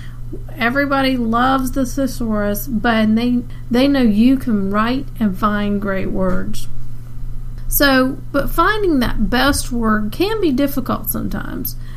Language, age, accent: English, 40-59, American